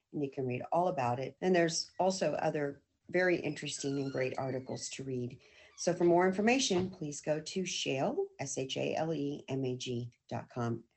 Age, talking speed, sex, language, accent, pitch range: 50-69, 140 wpm, female, English, American, 130-180 Hz